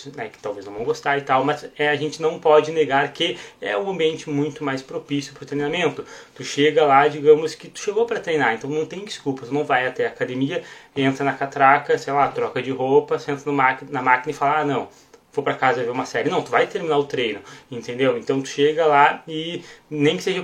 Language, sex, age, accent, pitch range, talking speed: Portuguese, male, 20-39, Brazilian, 135-195 Hz, 230 wpm